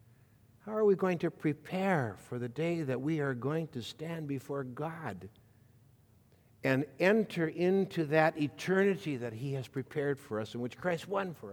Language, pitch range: English, 120-160 Hz